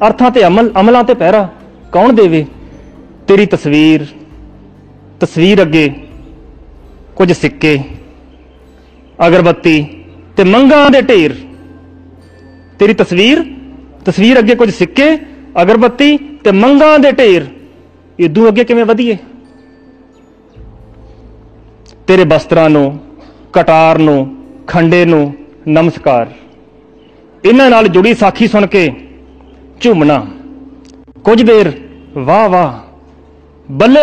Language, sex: Hindi, male